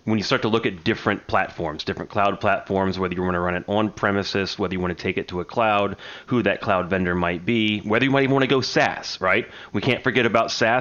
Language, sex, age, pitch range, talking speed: English, male, 30-49, 100-125 Hz, 260 wpm